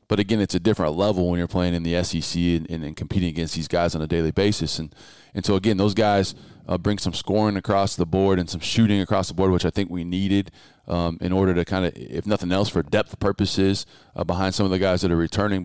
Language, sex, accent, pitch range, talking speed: English, male, American, 85-100 Hz, 255 wpm